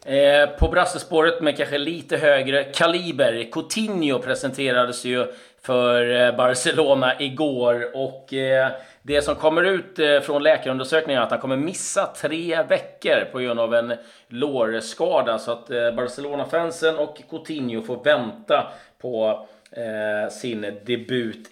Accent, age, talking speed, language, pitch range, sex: native, 30-49, 120 wpm, Swedish, 120-160 Hz, male